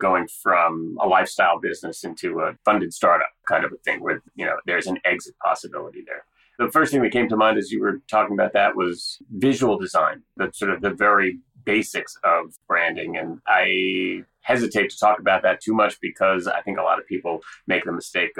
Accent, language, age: American, English, 30-49